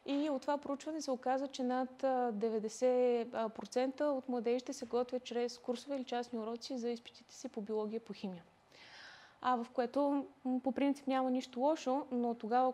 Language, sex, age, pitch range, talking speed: Bulgarian, female, 20-39, 230-260 Hz, 165 wpm